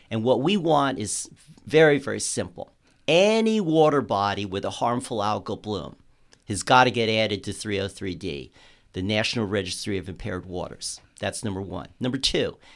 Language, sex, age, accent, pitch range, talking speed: English, male, 50-69, American, 110-140 Hz, 160 wpm